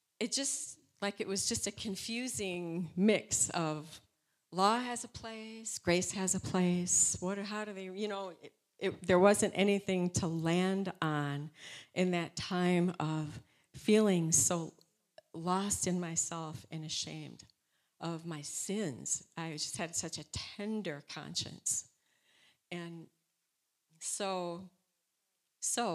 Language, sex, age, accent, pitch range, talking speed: English, female, 50-69, American, 160-195 Hz, 125 wpm